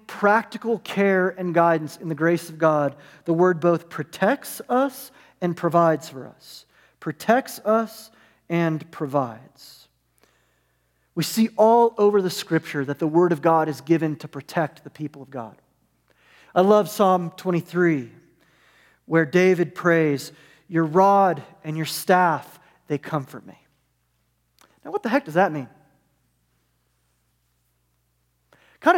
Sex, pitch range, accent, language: male, 150-225 Hz, American, English